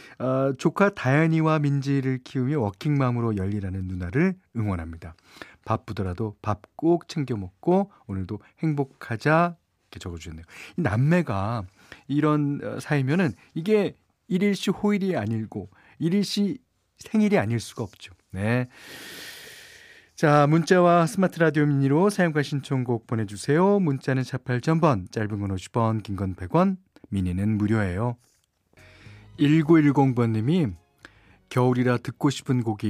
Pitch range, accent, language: 105-160 Hz, native, Korean